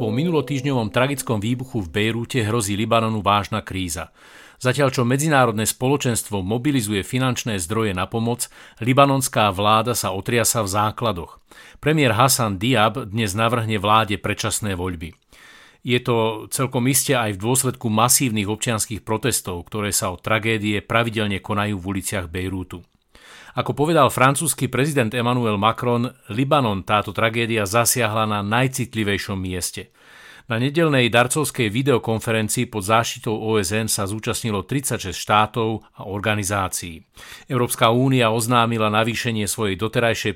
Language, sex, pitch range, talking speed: Slovak, male, 105-120 Hz, 125 wpm